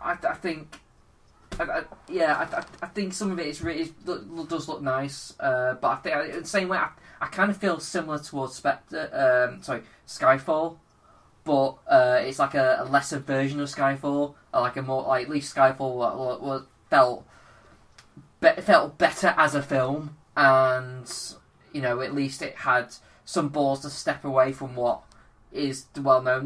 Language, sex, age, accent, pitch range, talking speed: English, male, 10-29, British, 130-150 Hz, 180 wpm